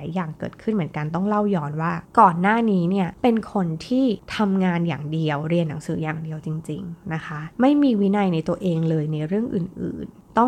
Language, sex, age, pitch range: Thai, female, 20-39, 170-235 Hz